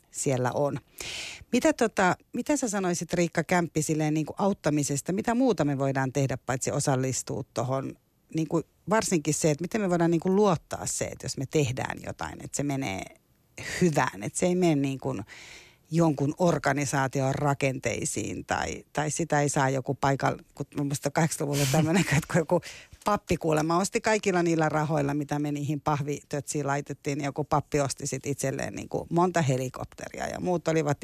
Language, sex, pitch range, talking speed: Finnish, female, 140-175 Hz, 160 wpm